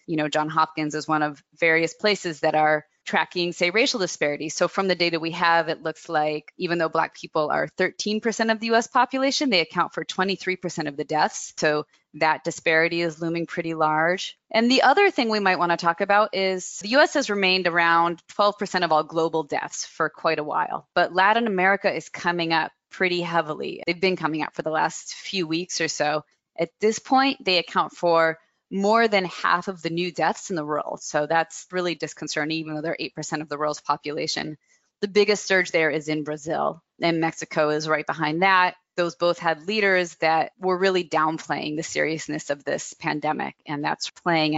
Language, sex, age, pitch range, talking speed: English, female, 20-39, 160-195 Hz, 200 wpm